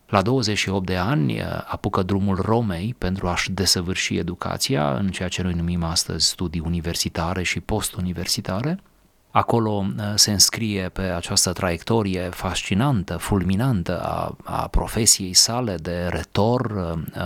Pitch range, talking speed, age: 90-105 Hz, 120 wpm, 30-49